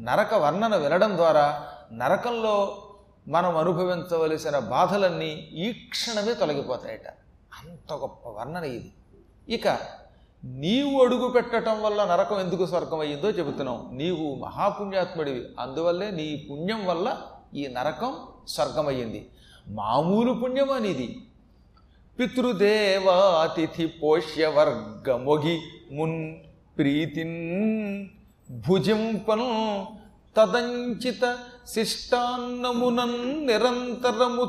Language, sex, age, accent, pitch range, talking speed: Telugu, male, 40-59, native, 155-220 Hz, 80 wpm